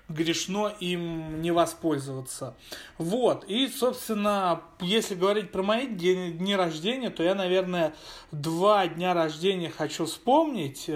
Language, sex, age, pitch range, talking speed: Russian, male, 30-49, 160-195 Hz, 120 wpm